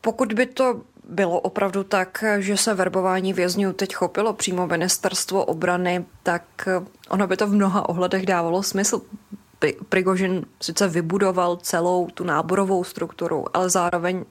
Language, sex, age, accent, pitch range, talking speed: Czech, female, 20-39, native, 165-190 Hz, 140 wpm